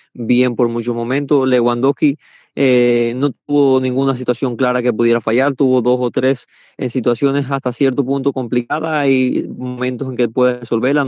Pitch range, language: 110-125 Hz, Spanish